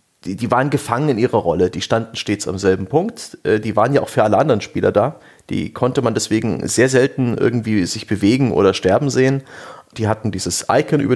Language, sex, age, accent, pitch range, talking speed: German, male, 30-49, German, 105-150 Hz, 205 wpm